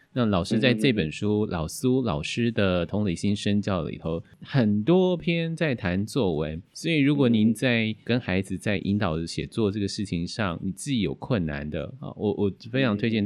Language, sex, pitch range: Chinese, male, 90-120 Hz